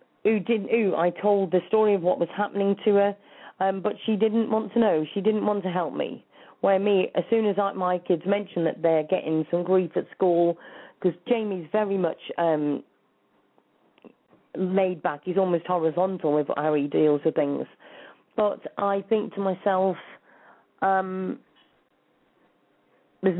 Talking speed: 160 wpm